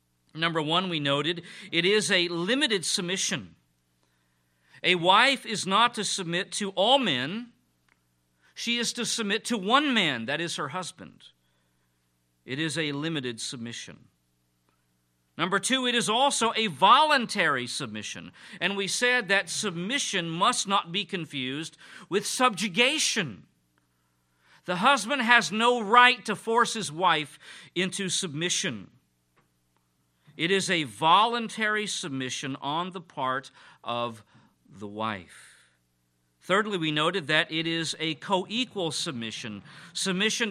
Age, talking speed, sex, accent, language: 50-69, 125 wpm, male, American, English